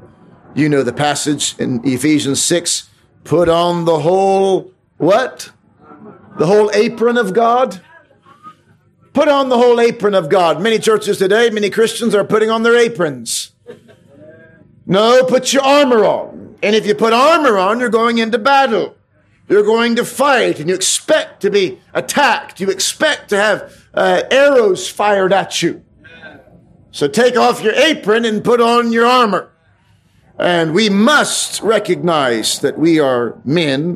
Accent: American